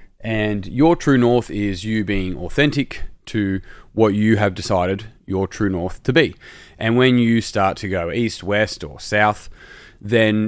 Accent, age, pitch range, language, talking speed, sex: Australian, 20-39, 100-120 Hz, English, 165 wpm, male